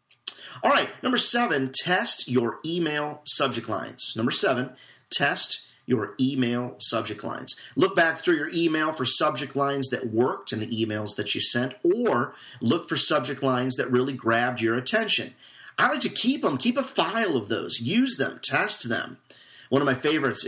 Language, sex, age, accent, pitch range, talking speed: English, male, 40-59, American, 115-145 Hz, 175 wpm